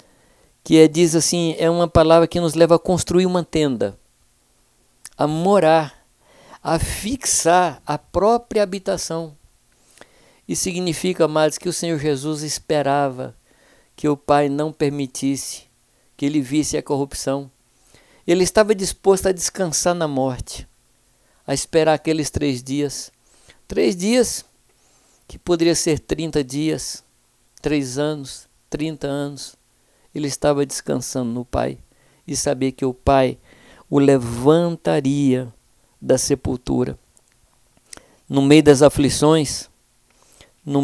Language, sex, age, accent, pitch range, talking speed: Portuguese, male, 50-69, Brazilian, 135-165 Hz, 120 wpm